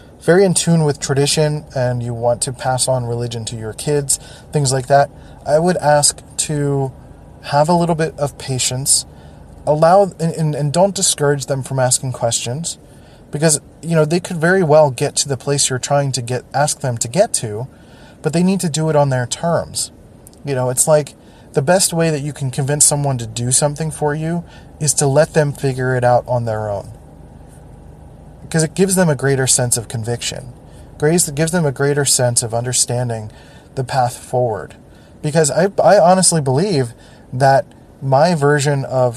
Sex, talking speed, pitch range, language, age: male, 190 wpm, 125-150 Hz, English, 20-39